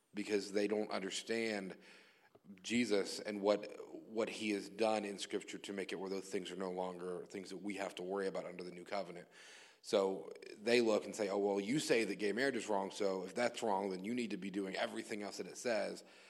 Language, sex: English, male